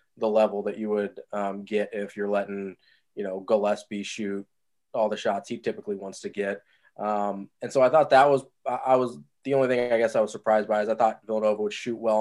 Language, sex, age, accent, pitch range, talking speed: English, male, 20-39, American, 105-125 Hz, 230 wpm